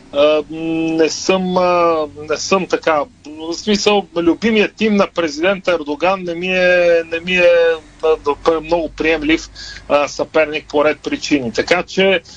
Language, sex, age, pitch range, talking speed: Bulgarian, male, 40-59, 160-195 Hz, 140 wpm